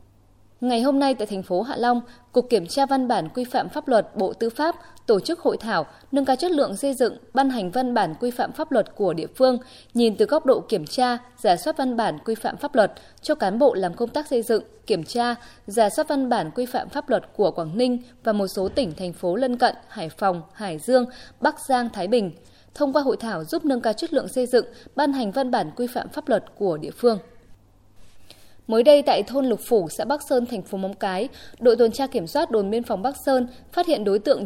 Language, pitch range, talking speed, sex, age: Vietnamese, 205-270 Hz, 245 wpm, female, 20-39